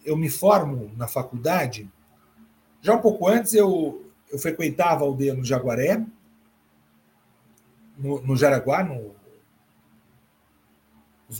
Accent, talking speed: Brazilian, 110 wpm